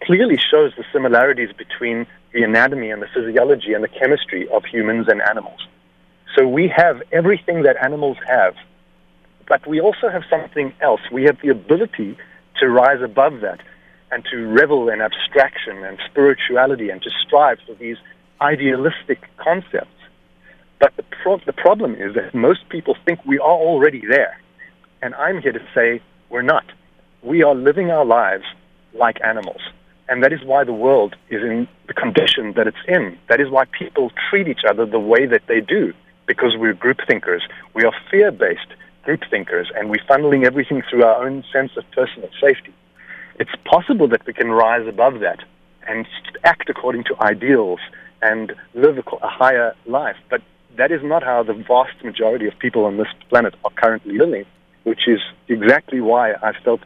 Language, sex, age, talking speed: English, male, 40-59, 175 wpm